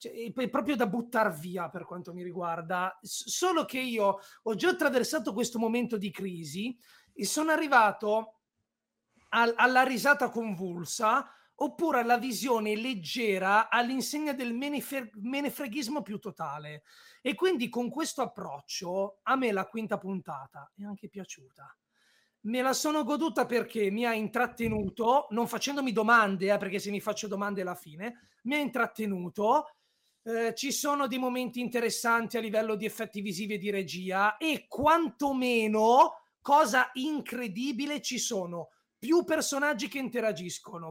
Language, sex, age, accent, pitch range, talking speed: Italian, male, 30-49, native, 200-260 Hz, 140 wpm